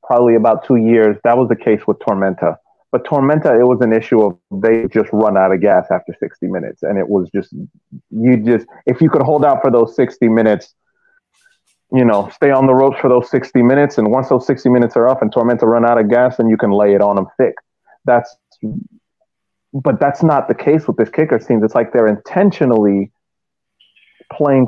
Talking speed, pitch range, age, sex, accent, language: 210 wpm, 110-140 Hz, 30-49, male, American, English